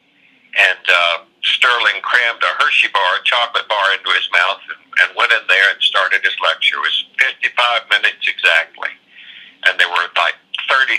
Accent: American